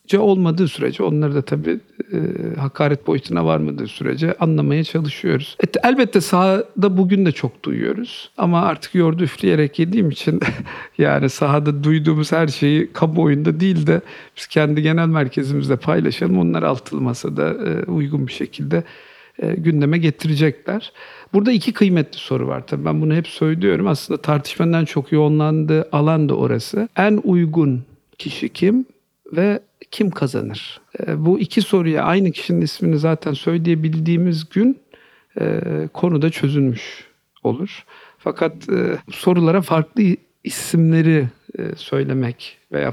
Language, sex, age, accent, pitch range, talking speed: Turkish, male, 50-69, native, 145-180 Hz, 135 wpm